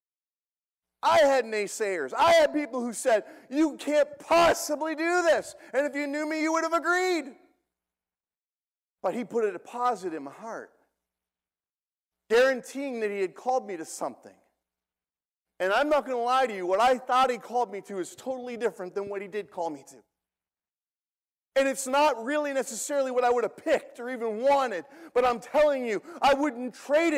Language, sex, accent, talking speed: English, male, American, 185 wpm